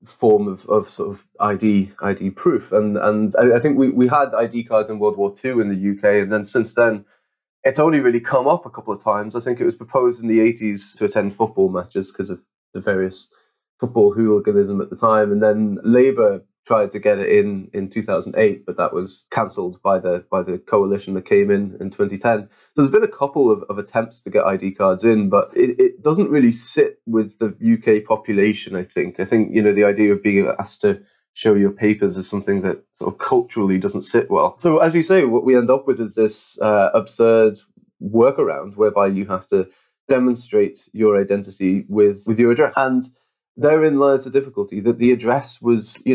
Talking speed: 215 wpm